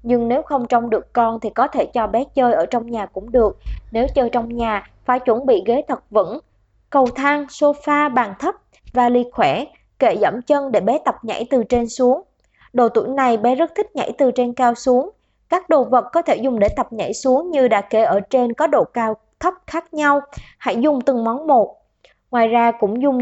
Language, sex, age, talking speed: Vietnamese, male, 20-39, 220 wpm